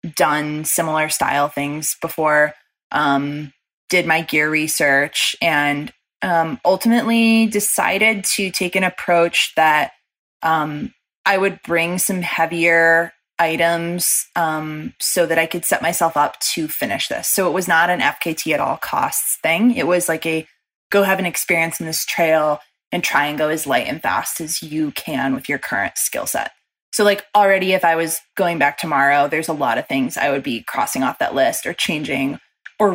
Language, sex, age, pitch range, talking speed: English, female, 20-39, 150-180 Hz, 180 wpm